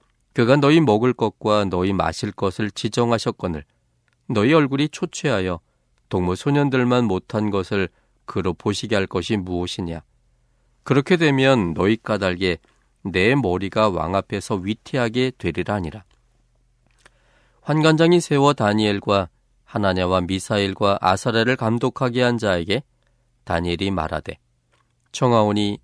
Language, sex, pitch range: Korean, male, 90-125 Hz